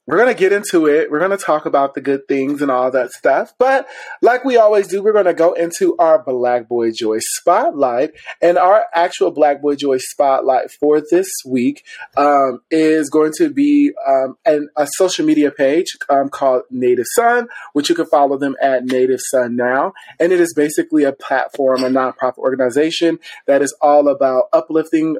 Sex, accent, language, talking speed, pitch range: male, American, English, 195 wpm, 135-170 Hz